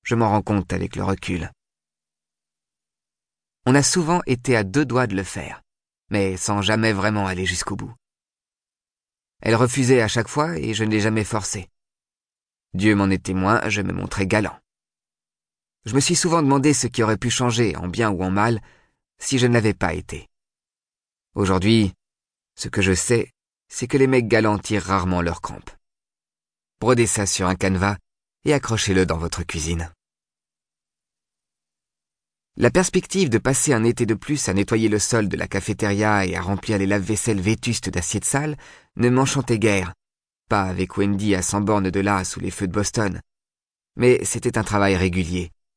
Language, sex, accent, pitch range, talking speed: French, male, French, 90-120 Hz, 170 wpm